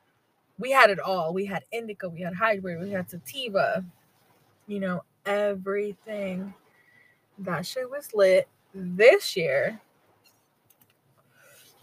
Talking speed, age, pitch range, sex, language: 115 wpm, 20-39, 180-215 Hz, female, English